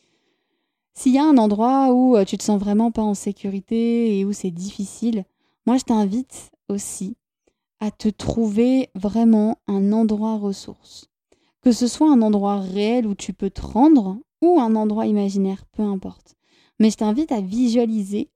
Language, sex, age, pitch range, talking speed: French, female, 20-39, 185-225 Hz, 165 wpm